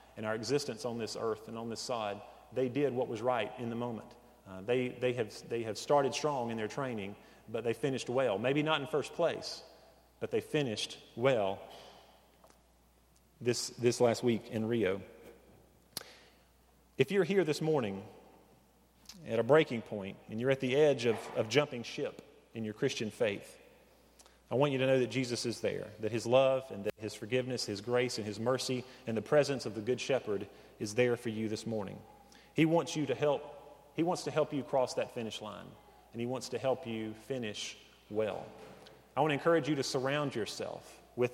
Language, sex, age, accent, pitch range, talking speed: English, male, 40-59, American, 110-140 Hz, 195 wpm